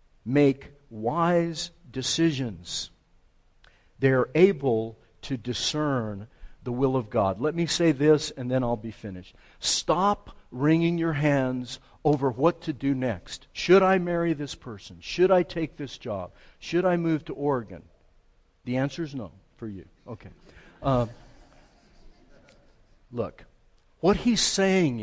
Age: 50-69